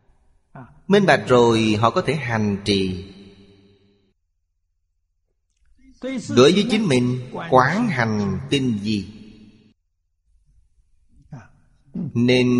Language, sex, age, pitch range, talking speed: Vietnamese, male, 30-49, 100-130 Hz, 80 wpm